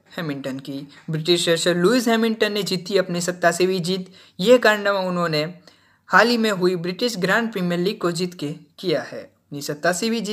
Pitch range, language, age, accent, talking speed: 170-215 Hz, Hindi, 20-39, native, 130 wpm